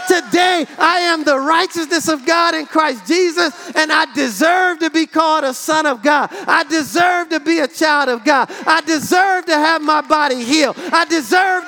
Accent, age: American, 40-59